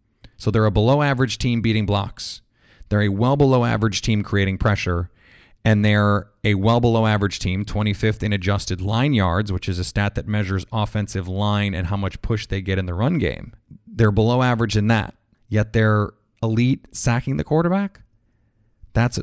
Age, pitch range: 30-49, 105-120 Hz